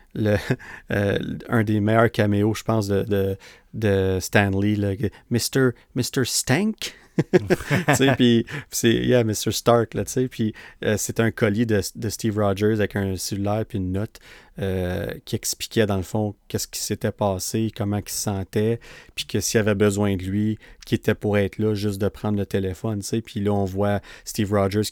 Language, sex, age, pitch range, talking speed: French, male, 30-49, 100-115 Hz, 175 wpm